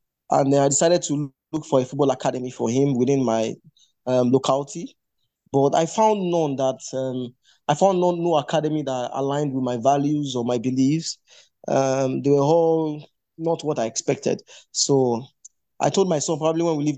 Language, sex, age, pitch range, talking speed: English, male, 20-39, 130-160 Hz, 180 wpm